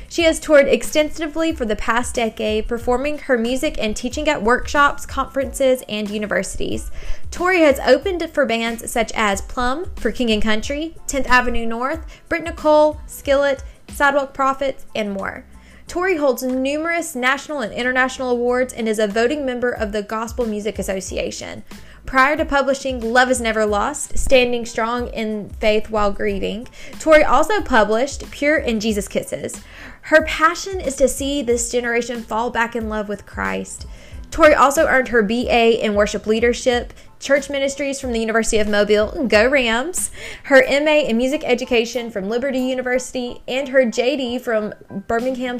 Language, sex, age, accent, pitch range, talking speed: English, female, 20-39, American, 220-280 Hz, 160 wpm